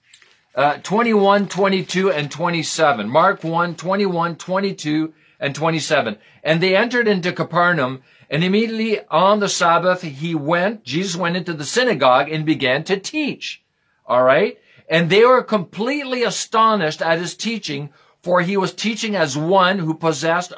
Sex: male